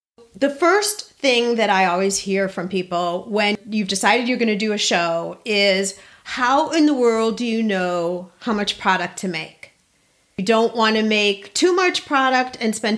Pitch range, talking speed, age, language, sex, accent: 195-255 Hz, 190 wpm, 40-59, English, female, American